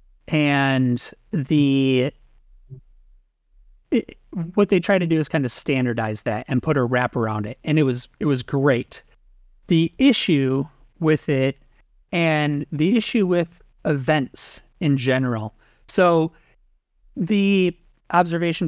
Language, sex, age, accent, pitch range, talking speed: English, male, 30-49, American, 125-165 Hz, 125 wpm